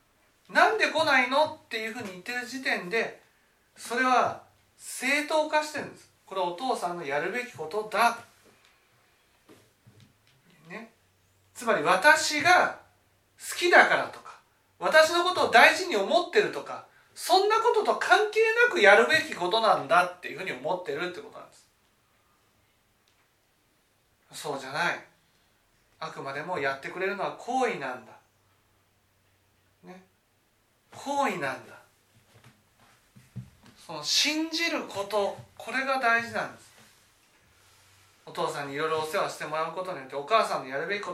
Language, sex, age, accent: Japanese, male, 40-59, native